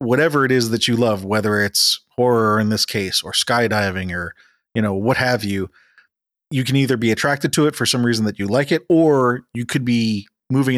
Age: 30-49